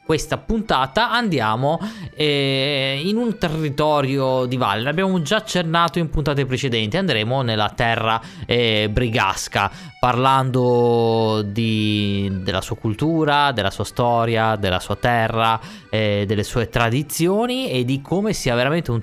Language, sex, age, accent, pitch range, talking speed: Italian, male, 20-39, native, 115-155 Hz, 125 wpm